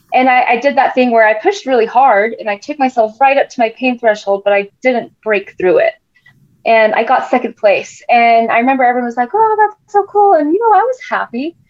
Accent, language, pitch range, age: American, English, 200-255 Hz, 20-39